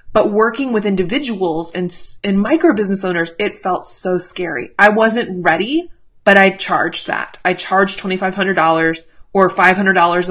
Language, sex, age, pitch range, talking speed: English, female, 20-39, 185-230 Hz, 145 wpm